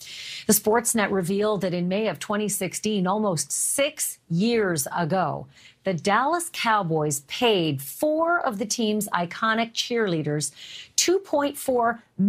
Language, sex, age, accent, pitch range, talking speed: English, female, 40-59, American, 175-240 Hz, 110 wpm